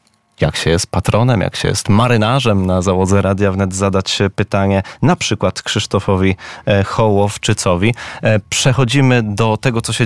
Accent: native